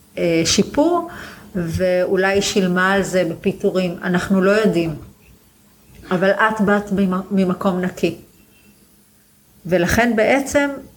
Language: Hebrew